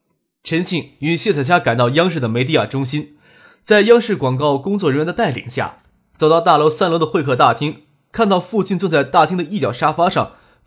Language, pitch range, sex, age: Chinese, 125-175 Hz, male, 20-39